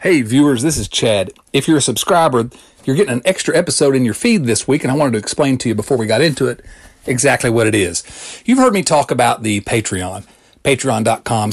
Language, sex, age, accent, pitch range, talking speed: English, male, 40-59, American, 115-140 Hz, 225 wpm